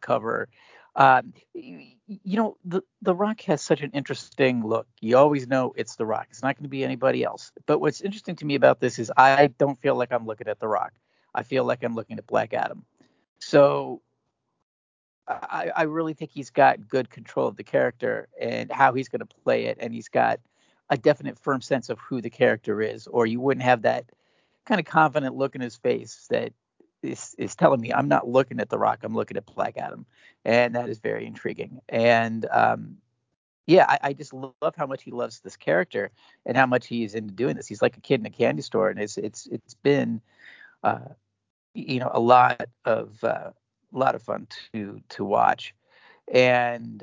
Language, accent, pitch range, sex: English, American, 120-160 Hz, male